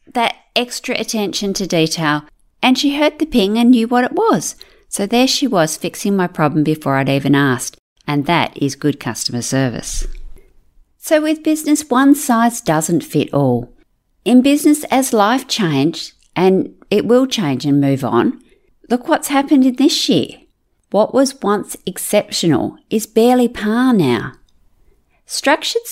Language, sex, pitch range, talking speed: English, female, 160-265 Hz, 155 wpm